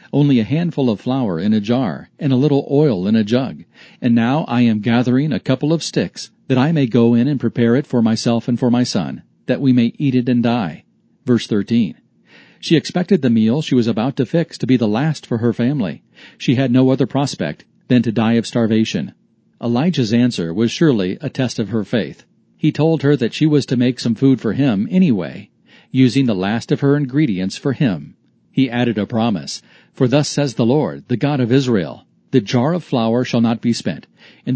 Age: 40-59